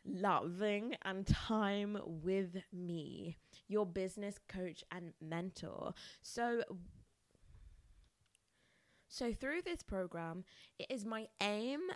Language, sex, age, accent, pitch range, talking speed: English, female, 20-39, British, 180-230 Hz, 95 wpm